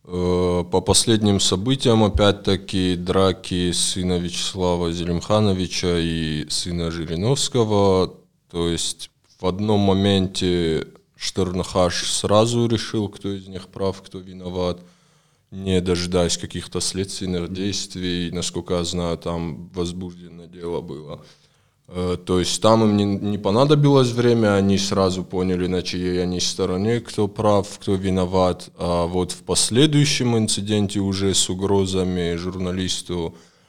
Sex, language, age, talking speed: male, Russian, 20-39, 115 wpm